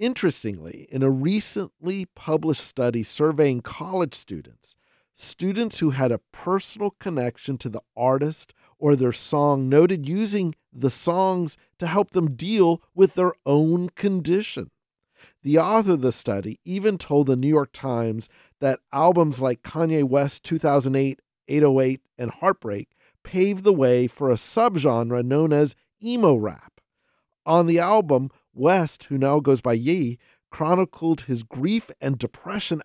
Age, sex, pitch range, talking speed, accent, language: 50-69, male, 130-185 Hz, 140 wpm, American, English